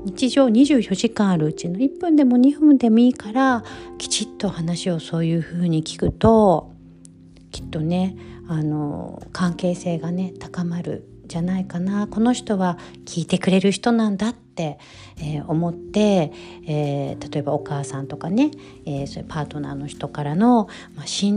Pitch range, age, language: 150-205 Hz, 40-59, Japanese